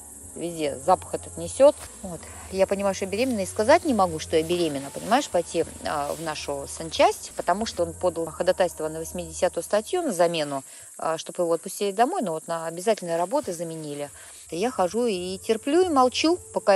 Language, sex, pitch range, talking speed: Russian, female, 135-190 Hz, 185 wpm